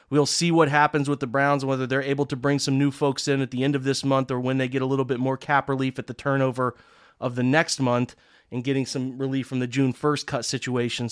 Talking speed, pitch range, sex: 265 wpm, 130-150 Hz, male